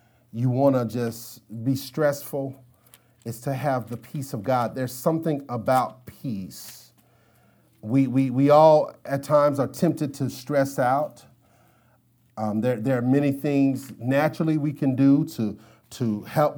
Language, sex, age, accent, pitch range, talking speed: English, male, 40-59, American, 130-170 Hz, 150 wpm